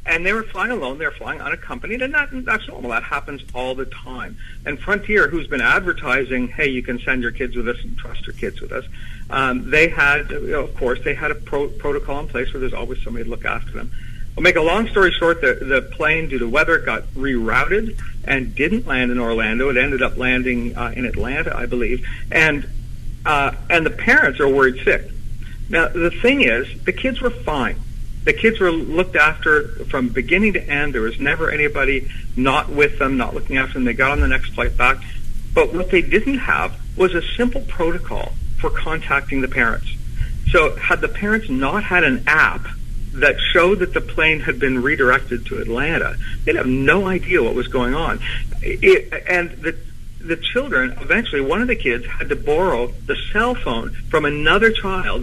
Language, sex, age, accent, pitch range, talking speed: English, male, 60-79, American, 125-210 Hz, 205 wpm